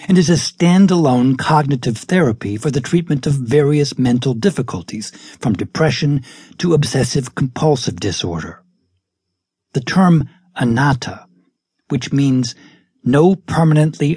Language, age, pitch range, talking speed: English, 60-79, 125-165 Hz, 105 wpm